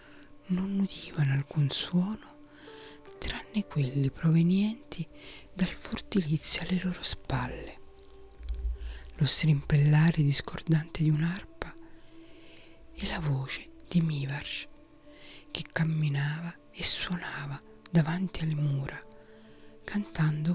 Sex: female